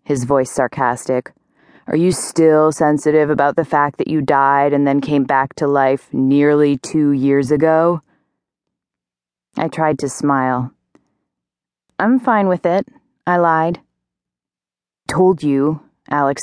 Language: English